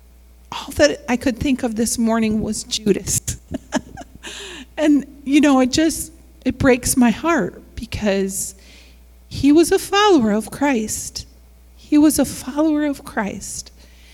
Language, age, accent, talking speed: English, 40-59, American, 135 wpm